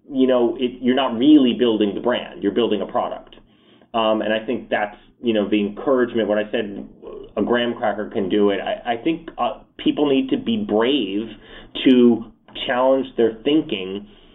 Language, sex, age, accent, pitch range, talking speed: English, male, 30-49, American, 110-130 Hz, 185 wpm